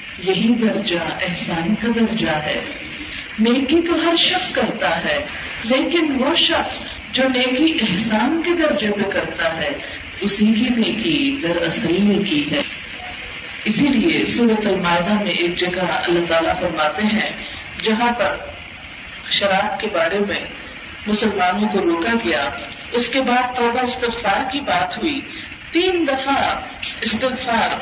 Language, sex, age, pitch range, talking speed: Urdu, female, 50-69, 205-290 Hz, 135 wpm